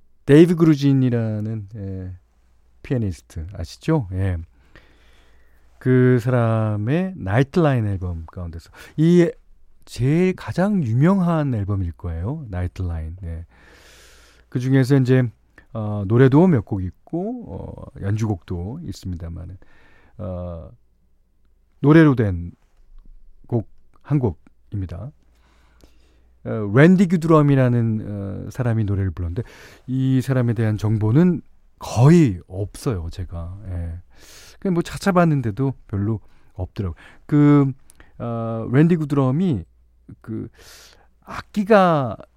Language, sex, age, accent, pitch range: Korean, male, 40-59, native, 90-135 Hz